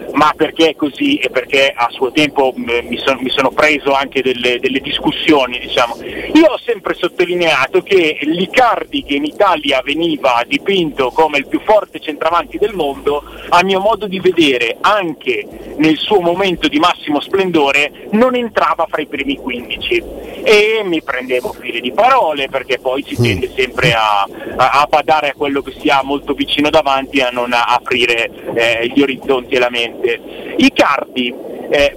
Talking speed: 170 wpm